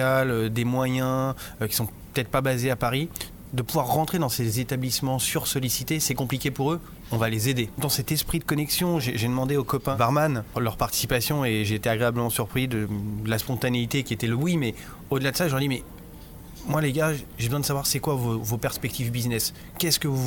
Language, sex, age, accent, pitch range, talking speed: French, male, 30-49, French, 120-150 Hz, 225 wpm